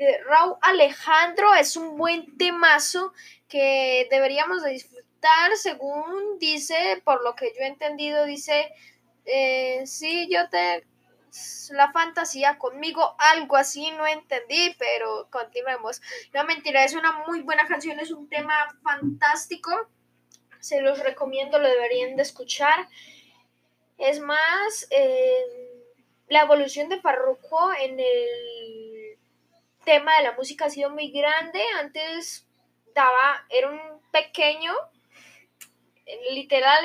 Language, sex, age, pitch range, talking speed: Spanish, female, 10-29, 275-340 Hz, 120 wpm